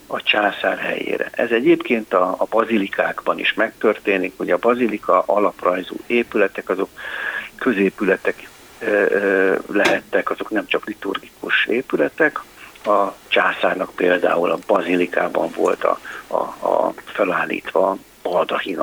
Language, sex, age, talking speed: Hungarian, male, 60-79, 115 wpm